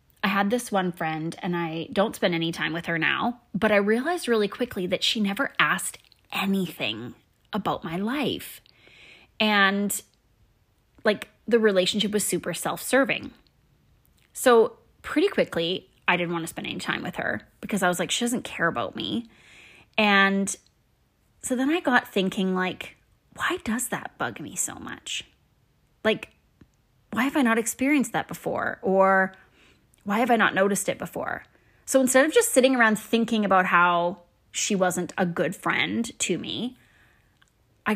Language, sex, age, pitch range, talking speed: English, female, 20-39, 180-235 Hz, 160 wpm